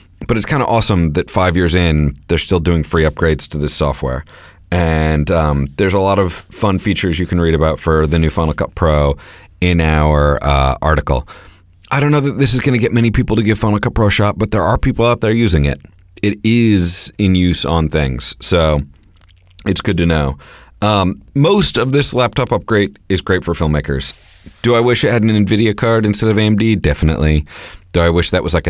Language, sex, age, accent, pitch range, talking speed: English, male, 30-49, American, 80-105 Hz, 215 wpm